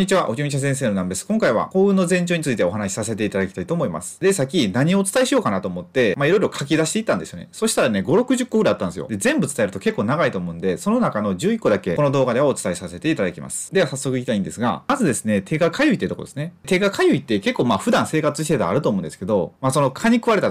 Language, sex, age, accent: Japanese, male, 30-49, native